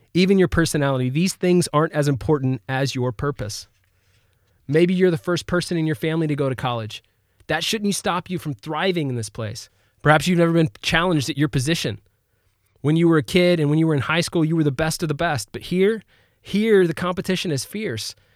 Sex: male